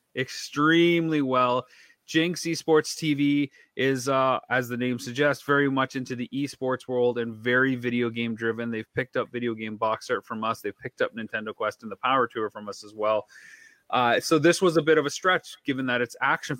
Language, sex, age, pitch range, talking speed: English, male, 30-49, 115-155 Hz, 205 wpm